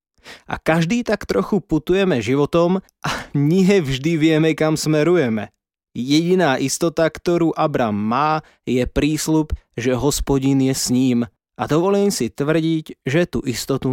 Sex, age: male, 20-39